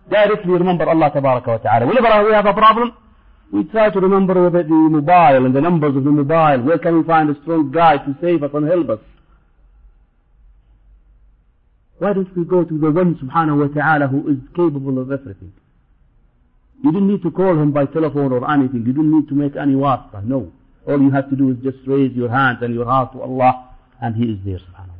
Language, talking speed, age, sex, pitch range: English, 225 wpm, 50-69, male, 125-165 Hz